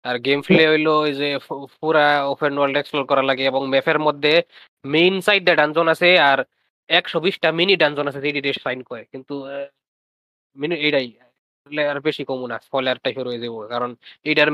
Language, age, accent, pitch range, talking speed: Bengali, 20-39, native, 135-155 Hz, 85 wpm